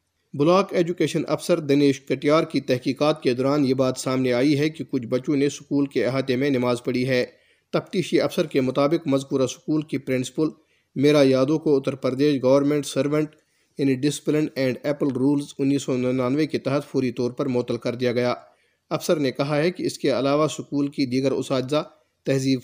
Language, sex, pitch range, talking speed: Urdu, male, 130-150 Hz, 185 wpm